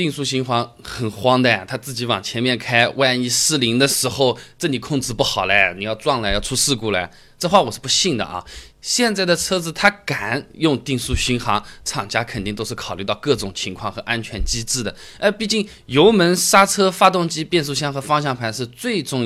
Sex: male